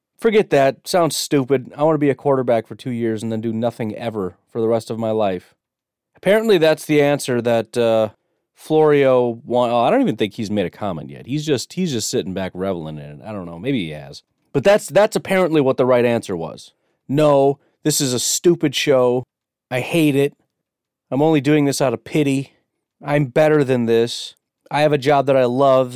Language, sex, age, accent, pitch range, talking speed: English, male, 30-49, American, 115-155 Hz, 215 wpm